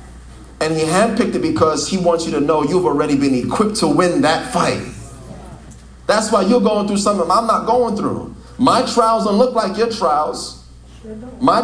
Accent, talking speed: American, 185 wpm